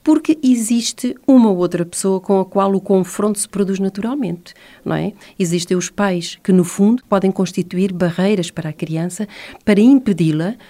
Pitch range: 175-220 Hz